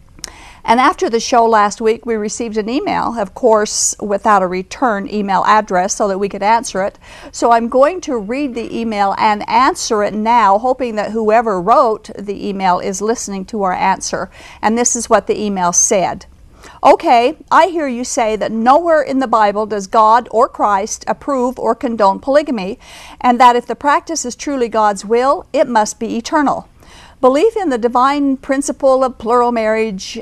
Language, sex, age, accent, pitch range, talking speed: English, female, 50-69, American, 210-265 Hz, 180 wpm